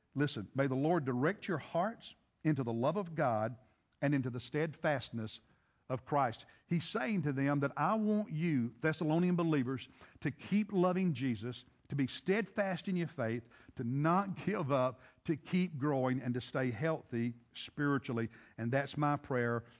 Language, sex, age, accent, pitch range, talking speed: English, male, 60-79, American, 125-155 Hz, 165 wpm